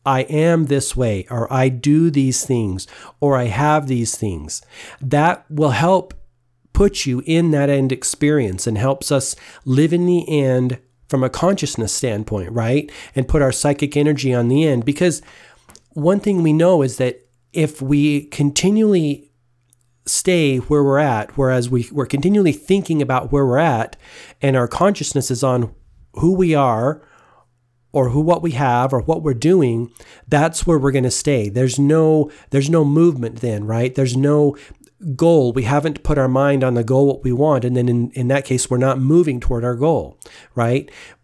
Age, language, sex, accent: 40-59, English, male, American